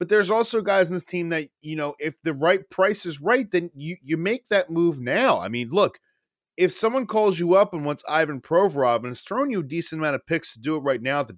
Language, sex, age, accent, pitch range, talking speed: English, male, 30-49, American, 140-190 Hz, 270 wpm